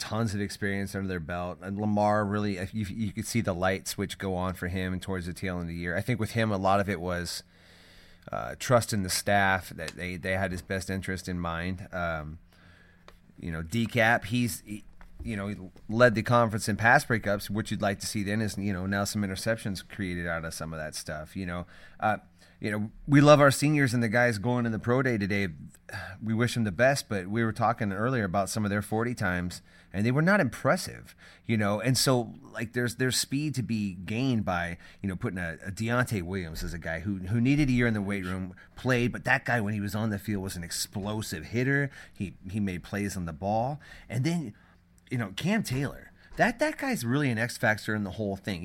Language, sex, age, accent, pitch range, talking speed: English, male, 30-49, American, 90-115 Hz, 225 wpm